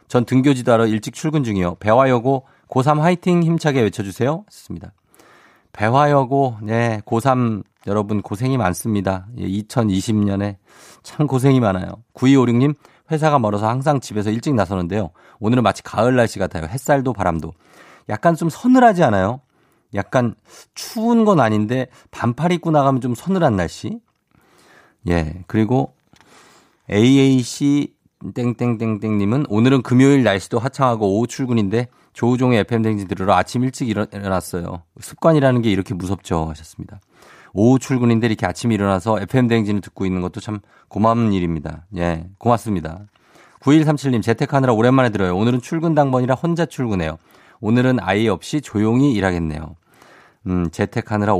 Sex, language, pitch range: male, Korean, 100-135 Hz